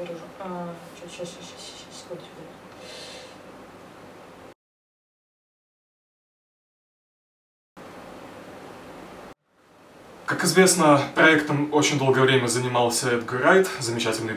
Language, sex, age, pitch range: Russian, male, 20-39, 115-145 Hz